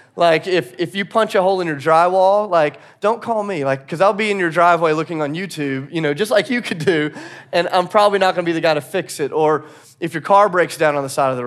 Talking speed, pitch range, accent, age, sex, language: 280 wpm, 150-190 Hz, American, 30-49, male, English